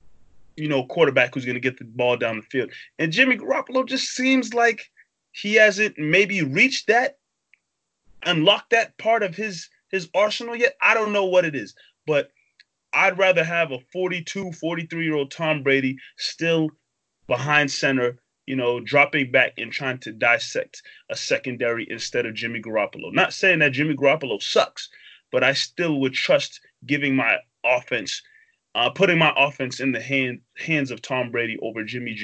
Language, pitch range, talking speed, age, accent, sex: English, 135-190 Hz, 170 wpm, 30-49, American, male